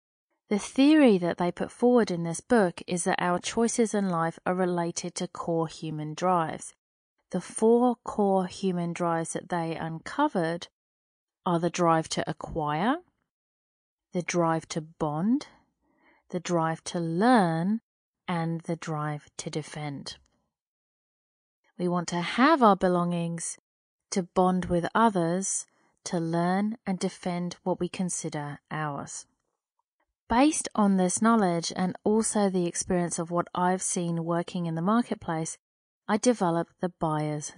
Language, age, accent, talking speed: English, 30-49, British, 135 wpm